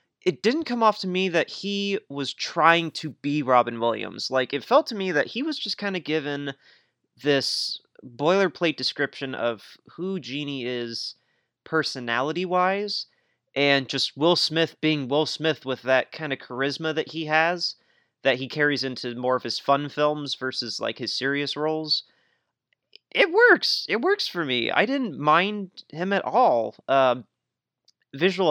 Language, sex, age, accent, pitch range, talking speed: English, male, 30-49, American, 125-170 Hz, 165 wpm